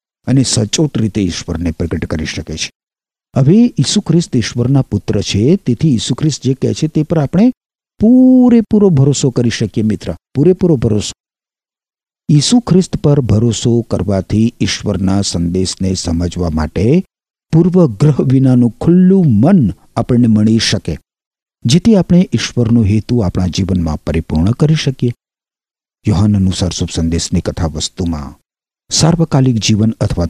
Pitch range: 95-150 Hz